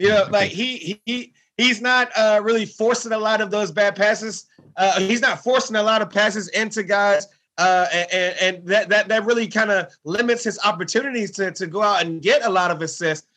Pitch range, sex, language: 180-220 Hz, male, English